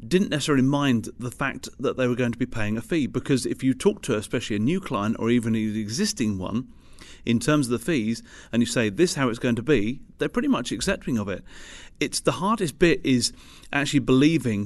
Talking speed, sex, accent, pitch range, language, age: 230 wpm, male, British, 115-140 Hz, English, 40-59